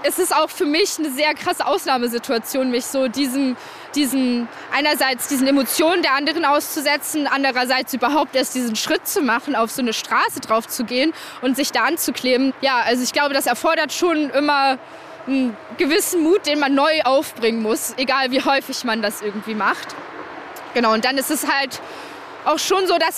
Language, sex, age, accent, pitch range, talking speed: German, female, 20-39, German, 260-310 Hz, 180 wpm